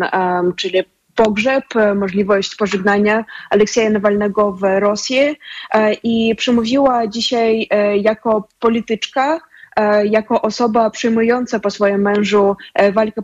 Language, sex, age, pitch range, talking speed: Polish, female, 20-39, 200-225 Hz, 90 wpm